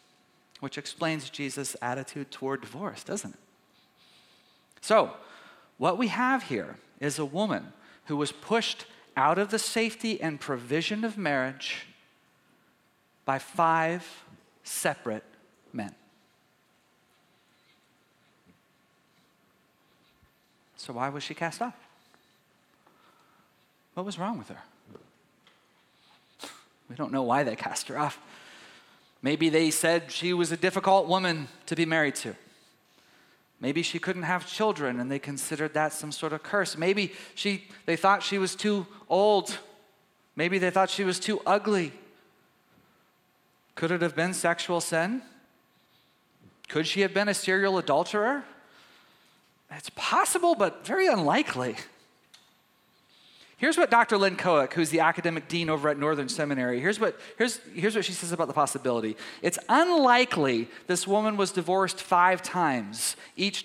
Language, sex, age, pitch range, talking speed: English, male, 40-59, 150-200 Hz, 130 wpm